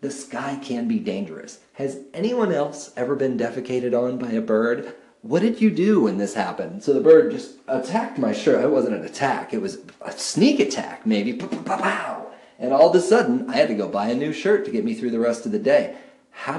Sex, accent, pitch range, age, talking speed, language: male, American, 115-190 Hz, 40-59, 230 wpm, English